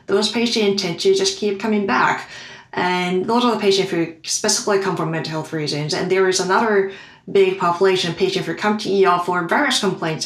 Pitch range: 165-200 Hz